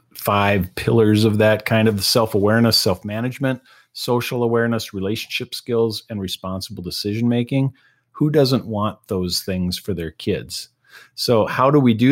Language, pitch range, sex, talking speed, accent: English, 100-135 Hz, male, 155 wpm, American